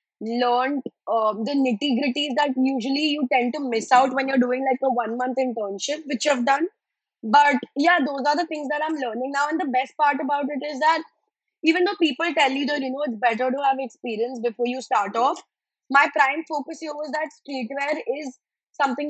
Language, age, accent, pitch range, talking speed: English, 20-39, Indian, 250-295 Hz, 210 wpm